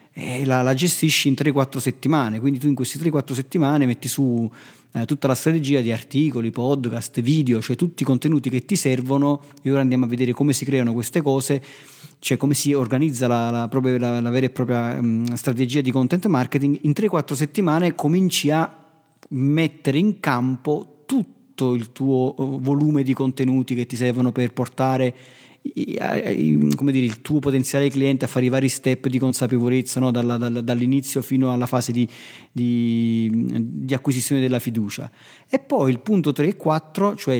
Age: 40-59